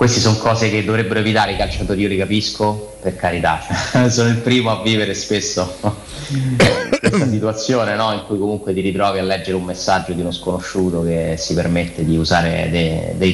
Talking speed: 185 wpm